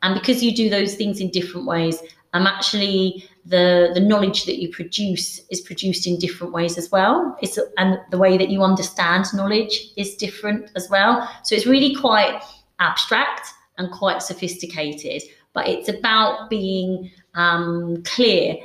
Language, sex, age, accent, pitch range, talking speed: English, female, 30-49, British, 180-215 Hz, 160 wpm